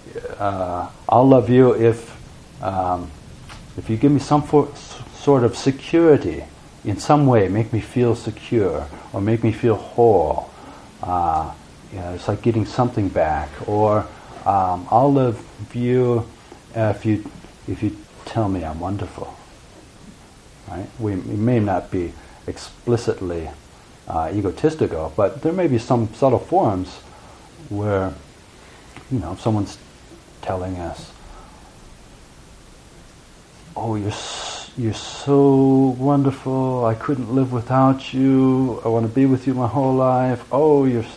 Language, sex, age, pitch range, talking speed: English, male, 40-59, 105-130 Hz, 135 wpm